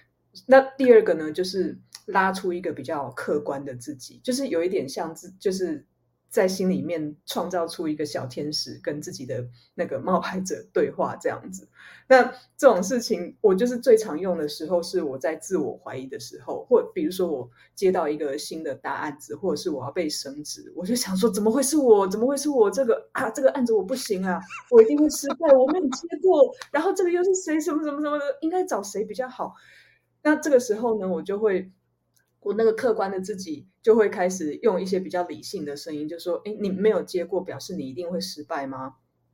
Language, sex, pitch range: Chinese, female, 170-265 Hz